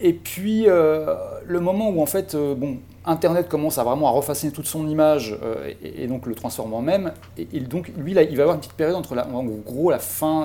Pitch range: 120-155 Hz